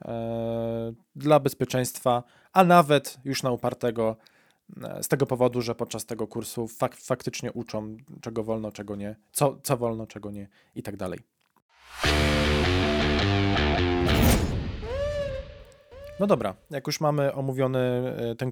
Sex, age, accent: male, 20-39, native